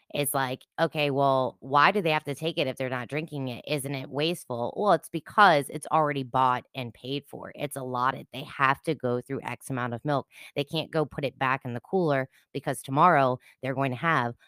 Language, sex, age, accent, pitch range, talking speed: English, female, 20-39, American, 125-150 Hz, 225 wpm